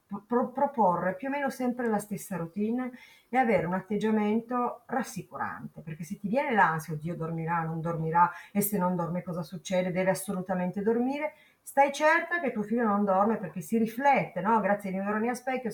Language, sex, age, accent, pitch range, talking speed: Italian, female, 40-59, native, 170-235 Hz, 185 wpm